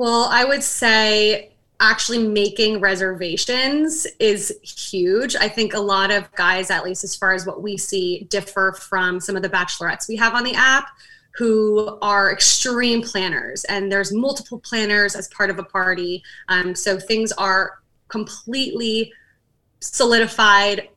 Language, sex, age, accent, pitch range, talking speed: English, female, 20-39, American, 190-225 Hz, 150 wpm